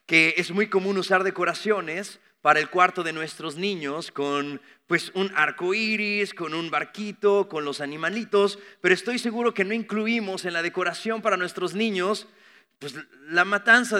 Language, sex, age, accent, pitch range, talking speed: English, male, 30-49, Mexican, 145-205 Hz, 165 wpm